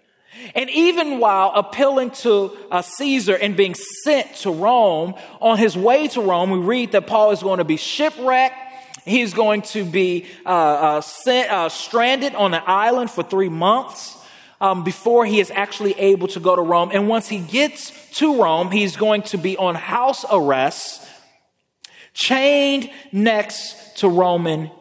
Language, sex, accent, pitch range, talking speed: English, male, American, 180-235 Hz, 165 wpm